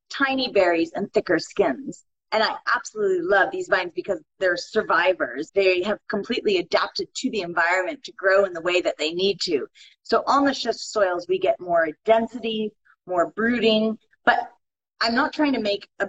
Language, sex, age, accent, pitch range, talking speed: English, female, 30-49, American, 195-275 Hz, 180 wpm